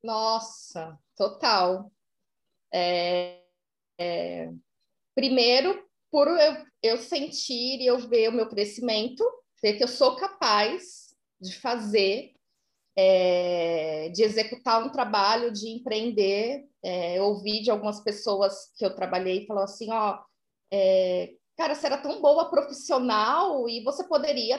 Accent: Brazilian